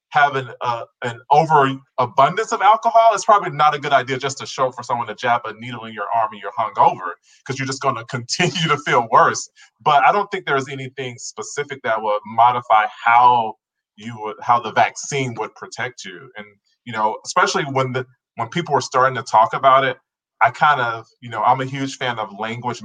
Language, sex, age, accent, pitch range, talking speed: English, male, 20-39, American, 120-175 Hz, 215 wpm